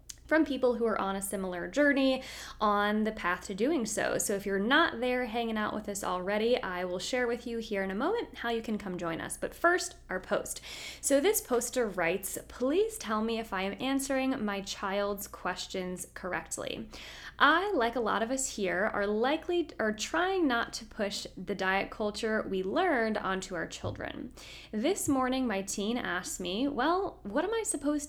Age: 20-39